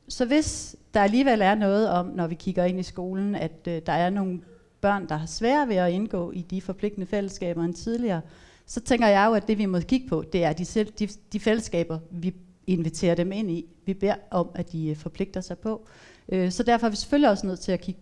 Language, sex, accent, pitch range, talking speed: Danish, female, native, 165-200 Hz, 235 wpm